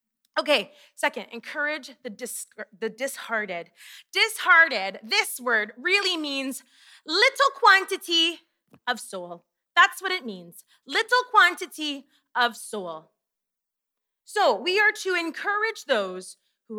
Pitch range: 230-320 Hz